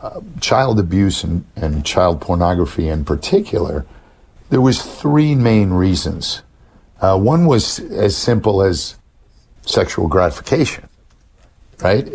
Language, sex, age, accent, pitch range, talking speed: English, male, 50-69, American, 85-110 Hz, 115 wpm